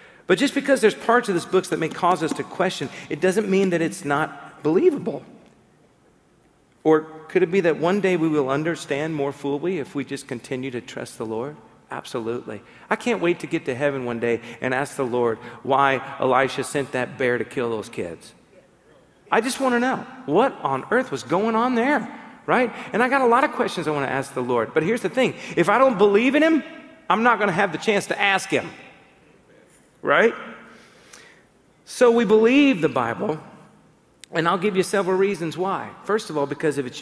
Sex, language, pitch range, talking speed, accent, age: male, English, 145-220 Hz, 205 wpm, American, 40-59